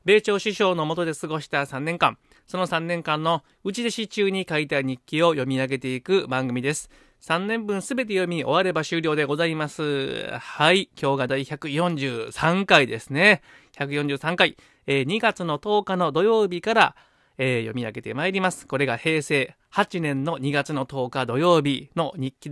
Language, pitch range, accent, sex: Japanese, 135-185 Hz, native, male